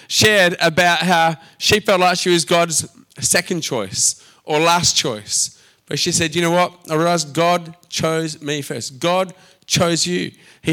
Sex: male